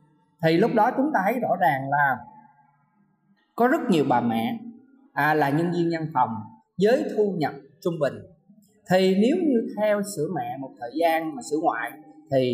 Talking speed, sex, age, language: 180 wpm, male, 20-39, Vietnamese